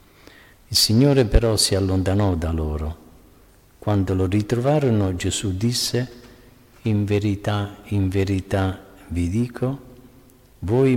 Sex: male